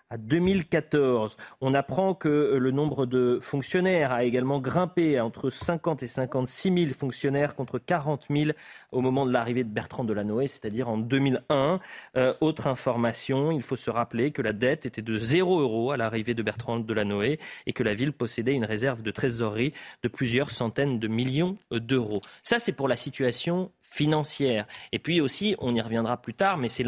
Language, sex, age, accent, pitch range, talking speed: French, male, 30-49, French, 115-150 Hz, 180 wpm